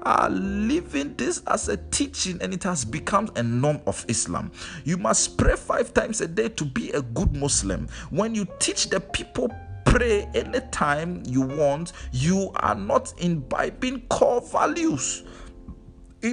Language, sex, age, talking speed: English, male, 50-69, 160 wpm